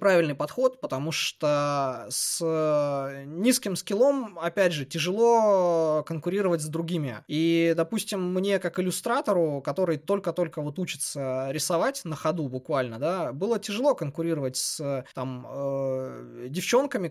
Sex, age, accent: male, 20-39, native